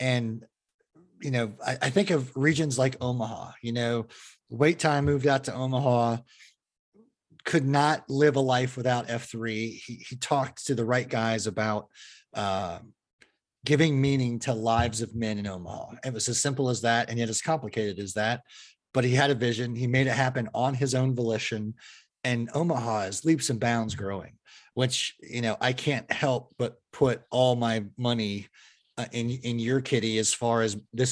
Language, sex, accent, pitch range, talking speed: English, male, American, 110-130 Hz, 180 wpm